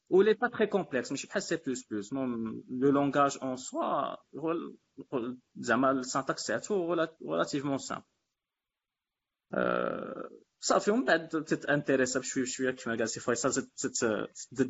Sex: male